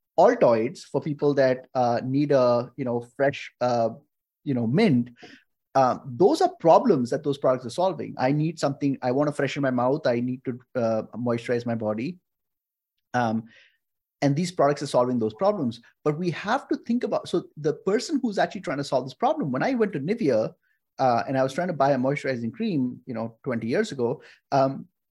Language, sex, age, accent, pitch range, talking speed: English, male, 30-49, Indian, 125-180 Hz, 200 wpm